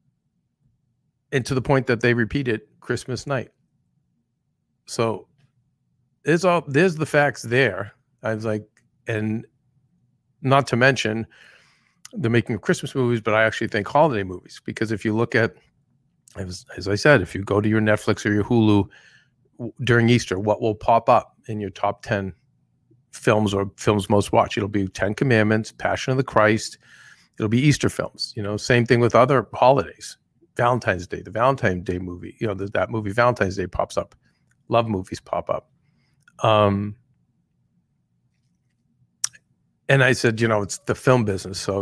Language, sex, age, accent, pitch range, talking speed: English, male, 50-69, American, 105-130 Hz, 170 wpm